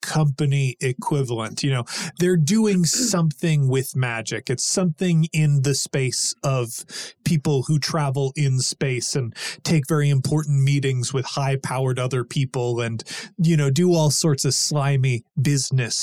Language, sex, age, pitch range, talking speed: English, male, 20-39, 135-180 Hz, 140 wpm